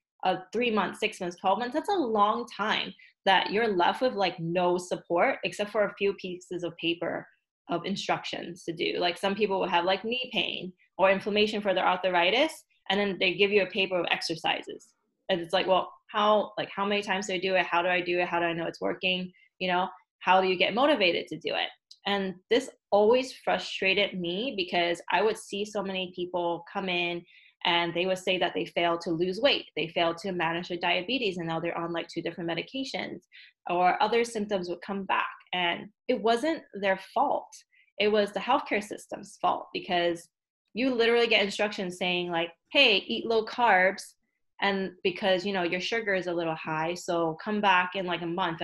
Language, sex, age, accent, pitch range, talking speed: English, female, 20-39, American, 175-210 Hz, 205 wpm